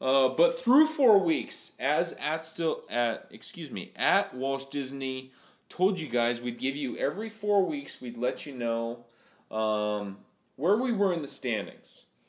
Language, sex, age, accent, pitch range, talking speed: English, male, 30-49, American, 130-195 Hz, 165 wpm